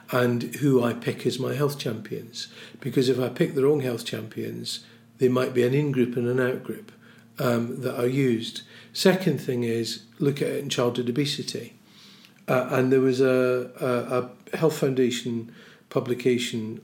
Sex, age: male, 40-59